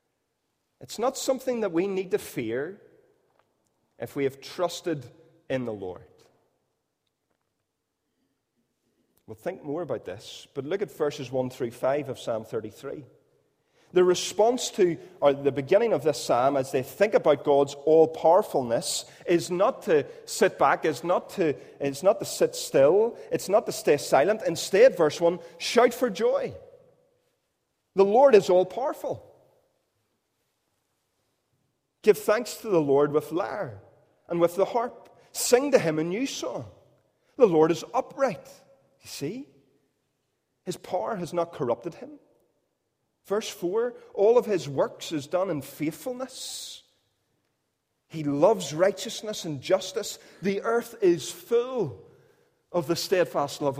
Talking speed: 135 wpm